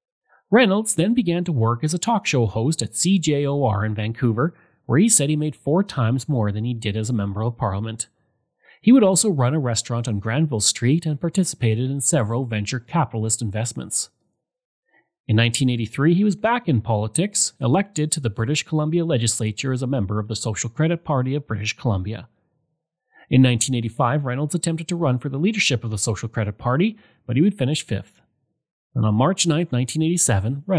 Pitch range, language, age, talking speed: 115-160 Hz, English, 30-49, 185 wpm